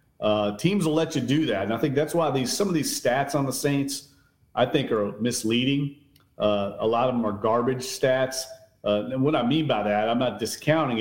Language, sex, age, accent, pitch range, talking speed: English, male, 40-59, American, 115-145 Hz, 230 wpm